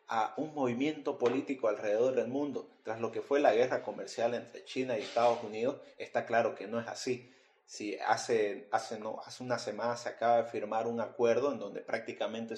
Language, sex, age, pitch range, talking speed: Spanish, male, 30-49, 120-165 Hz, 195 wpm